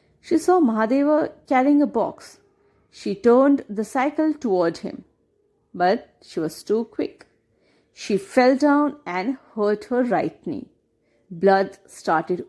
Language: English